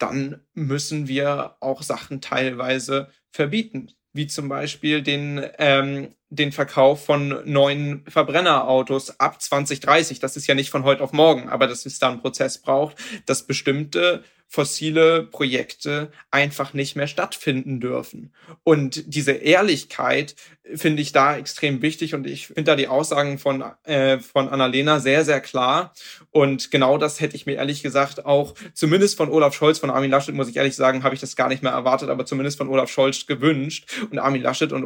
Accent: German